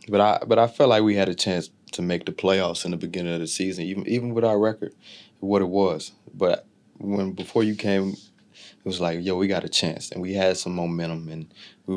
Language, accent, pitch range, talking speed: English, American, 85-100 Hz, 240 wpm